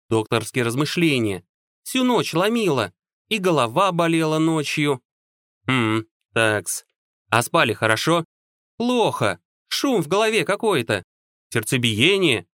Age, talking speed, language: 30-49, 95 wpm, Russian